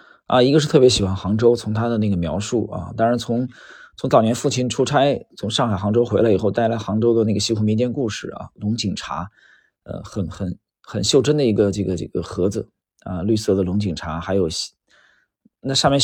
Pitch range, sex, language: 100-125 Hz, male, Chinese